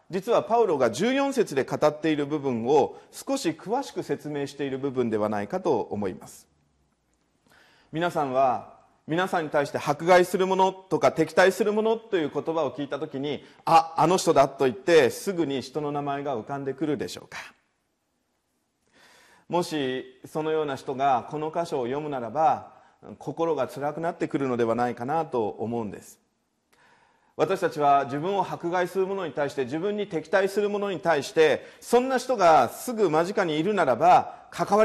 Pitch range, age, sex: 145-210 Hz, 40-59, male